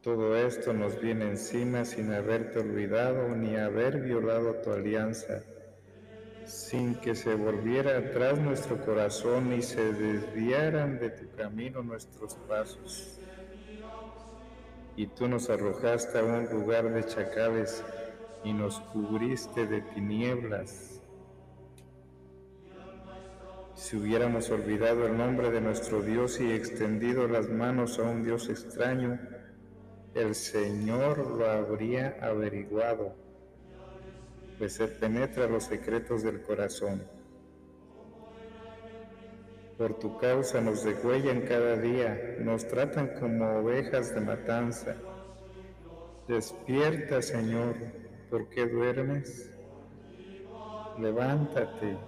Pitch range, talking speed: 110-125 Hz, 105 wpm